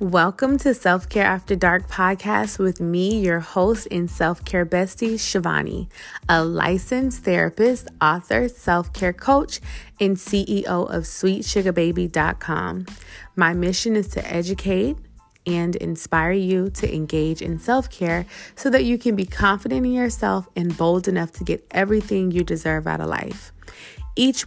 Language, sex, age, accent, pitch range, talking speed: English, female, 20-39, American, 170-210 Hz, 145 wpm